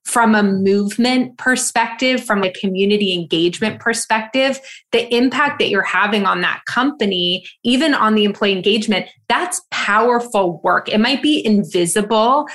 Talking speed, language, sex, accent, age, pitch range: 140 wpm, English, female, American, 20-39, 190-230 Hz